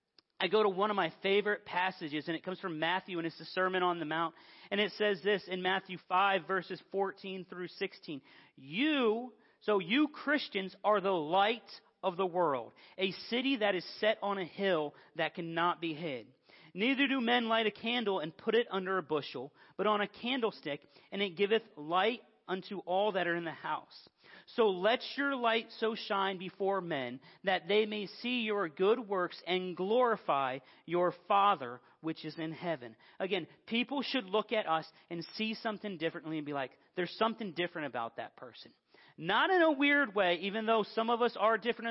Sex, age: male, 40-59